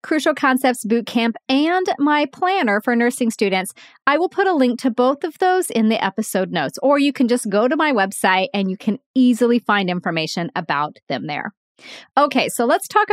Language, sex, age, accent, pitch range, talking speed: English, female, 30-49, American, 190-270 Hz, 195 wpm